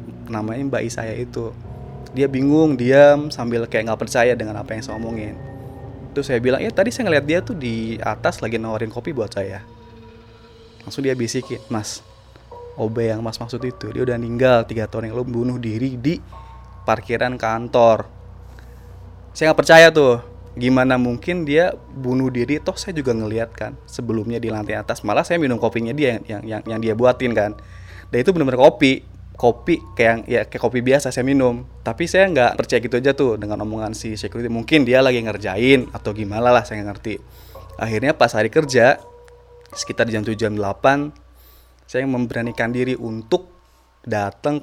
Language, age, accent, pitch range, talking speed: Indonesian, 20-39, native, 110-130 Hz, 175 wpm